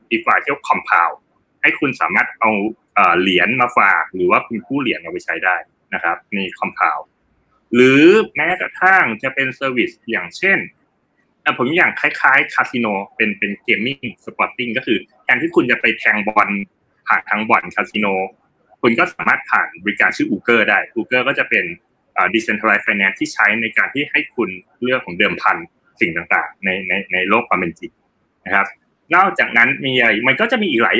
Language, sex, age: Thai, male, 20-39